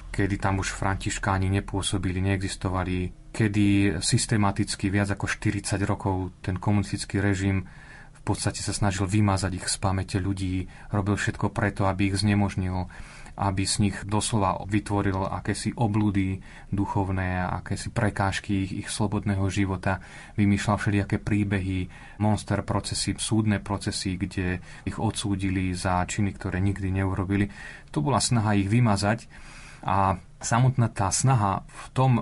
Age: 30-49